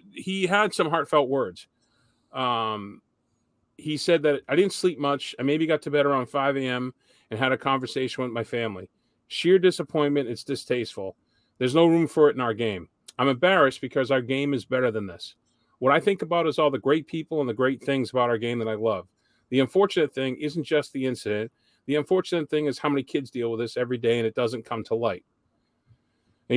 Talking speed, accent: 210 wpm, American